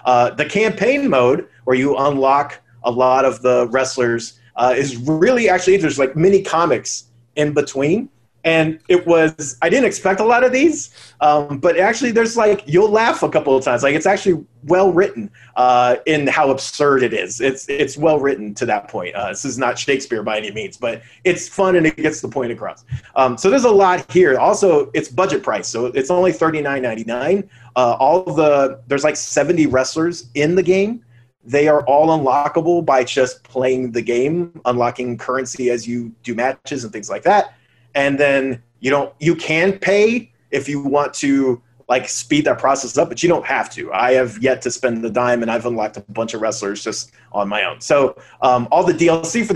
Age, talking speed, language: 30-49, 200 wpm, English